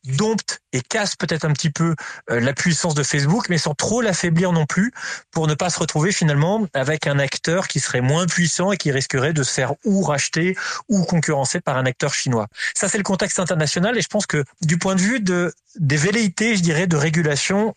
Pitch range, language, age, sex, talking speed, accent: 145-185 Hz, French, 30-49, male, 215 wpm, French